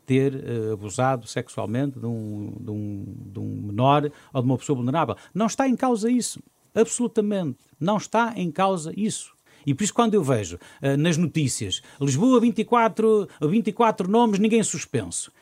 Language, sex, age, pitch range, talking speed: Portuguese, male, 50-69, 120-195 Hz, 145 wpm